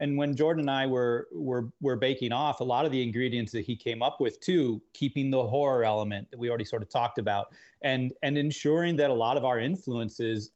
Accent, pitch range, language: American, 115-145 Hz, English